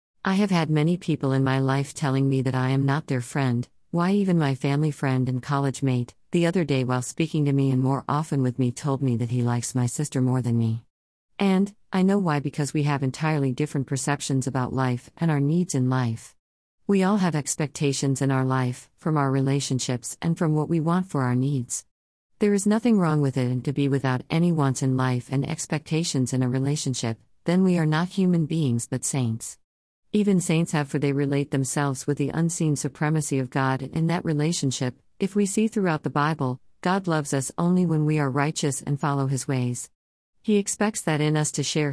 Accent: American